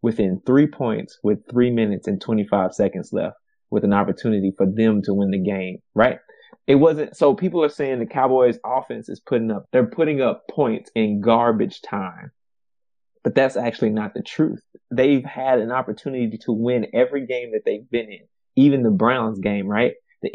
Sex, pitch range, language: male, 115-145 Hz, English